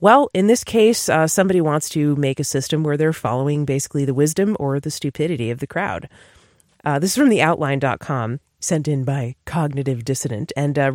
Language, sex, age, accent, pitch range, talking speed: English, female, 30-49, American, 140-200 Hz, 190 wpm